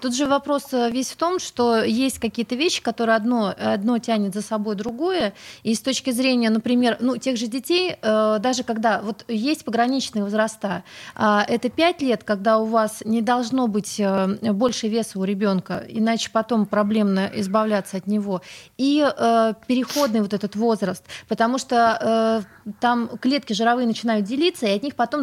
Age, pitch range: 30-49, 215-250 Hz